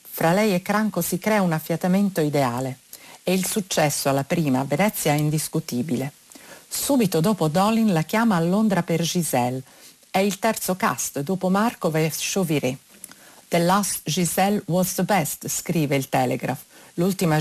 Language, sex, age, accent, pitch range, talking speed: Italian, female, 50-69, native, 150-200 Hz, 150 wpm